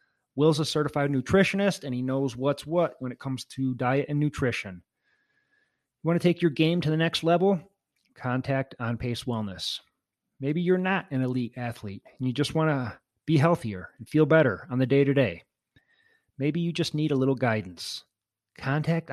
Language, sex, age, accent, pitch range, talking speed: English, male, 30-49, American, 125-160 Hz, 180 wpm